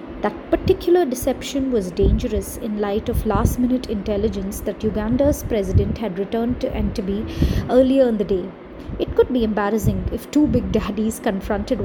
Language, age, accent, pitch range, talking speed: English, 30-49, Indian, 215-275 Hz, 150 wpm